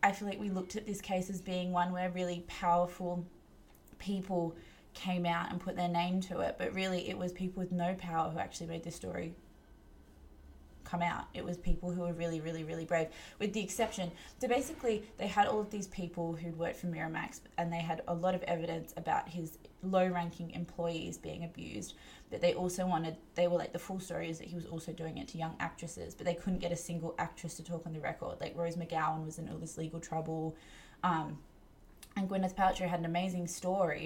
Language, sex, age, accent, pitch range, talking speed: English, female, 20-39, Australian, 165-180 Hz, 220 wpm